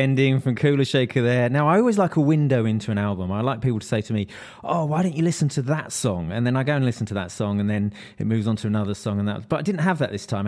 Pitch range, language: 105-135 Hz, English